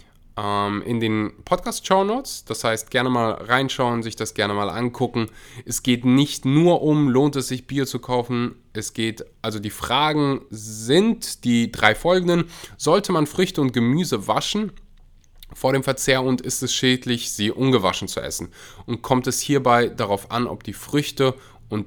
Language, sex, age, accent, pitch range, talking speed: German, male, 20-39, German, 105-145 Hz, 165 wpm